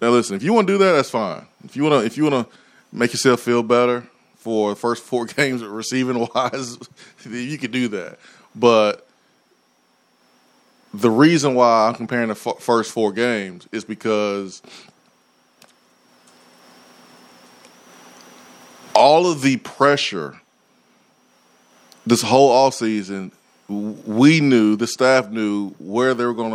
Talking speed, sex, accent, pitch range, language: 140 wpm, male, American, 110-130 Hz, English